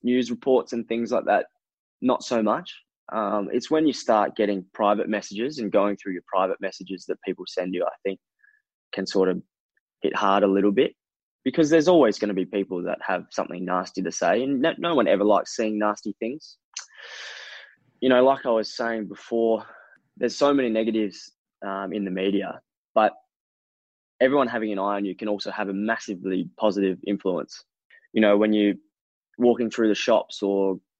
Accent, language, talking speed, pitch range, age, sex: Australian, English, 190 wpm, 95-115 Hz, 20-39, male